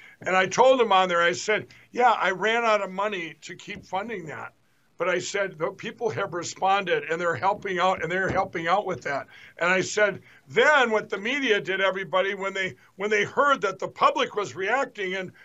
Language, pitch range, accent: English, 185-225 Hz, American